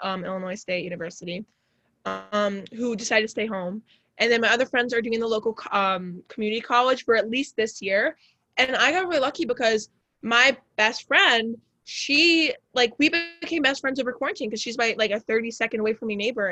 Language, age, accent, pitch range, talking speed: English, 20-39, American, 210-250 Hz, 205 wpm